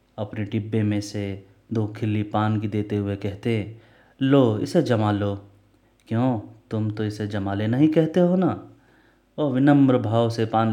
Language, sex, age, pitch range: Hindi, male, 30-49, 105-120 Hz